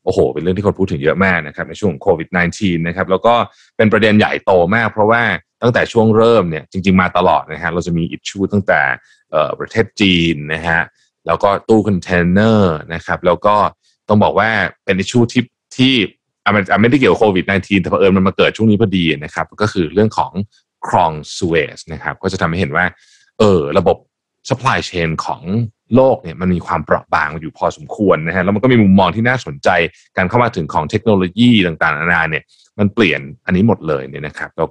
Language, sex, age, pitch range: Thai, male, 20-39, 90-115 Hz